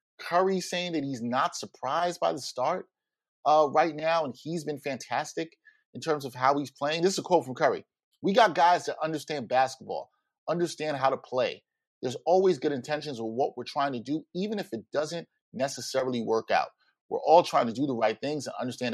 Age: 30-49